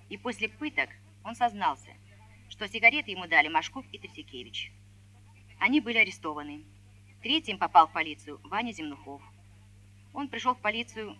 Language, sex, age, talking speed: Russian, female, 30-49, 135 wpm